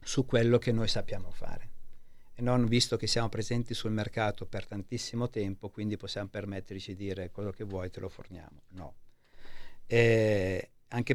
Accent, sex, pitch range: native, male, 100-120 Hz